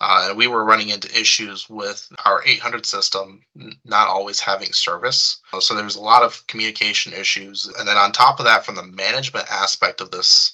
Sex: male